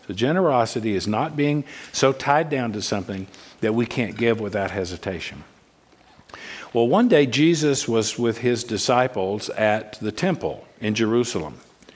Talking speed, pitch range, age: 145 wpm, 105-130 Hz, 50-69